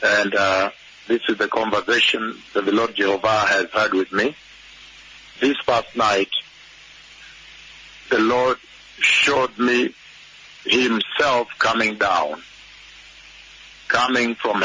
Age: 50-69